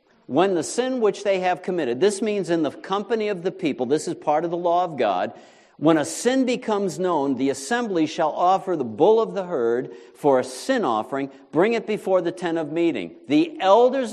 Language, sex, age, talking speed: English, male, 50-69, 210 wpm